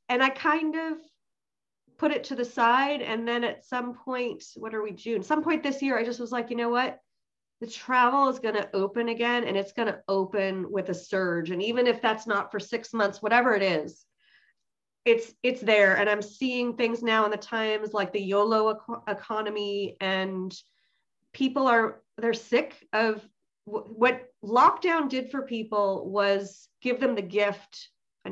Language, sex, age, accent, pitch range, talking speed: English, female, 30-49, American, 205-250 Hz, 190 wpm